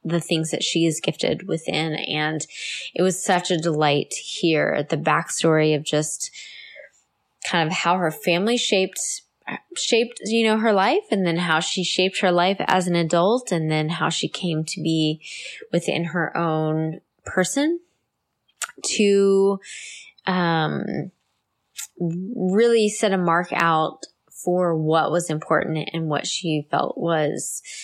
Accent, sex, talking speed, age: American, female, 145 wpm, 20-39